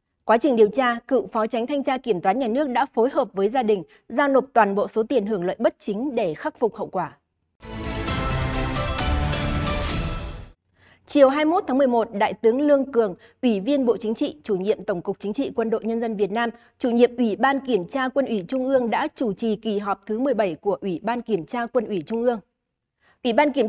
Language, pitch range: Vietnamese, 210-275 Hz